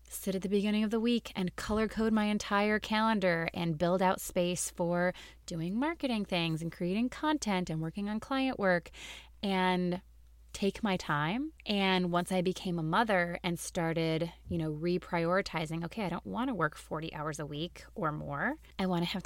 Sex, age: female, 20-39